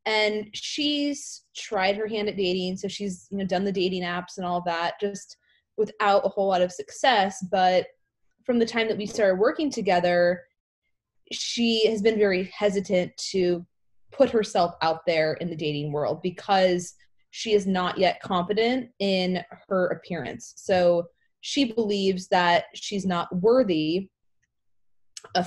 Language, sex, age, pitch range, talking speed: English, female, 20-39, 175-215 Hz, 155 wpm